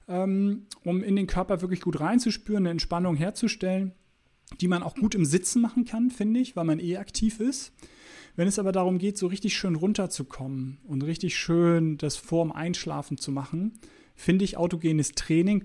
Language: German